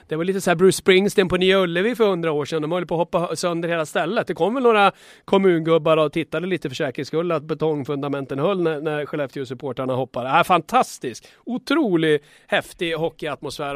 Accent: Swedish